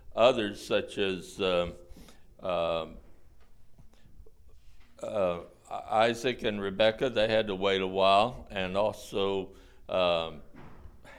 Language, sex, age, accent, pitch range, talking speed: English, male, 60-79, American, 90-110 Hz, 95 wpm